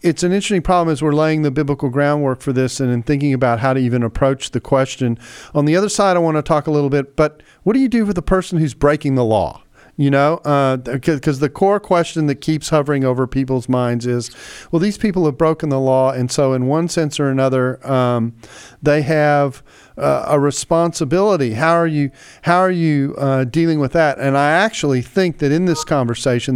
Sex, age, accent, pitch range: male, 40-59, American, 120-155 Hz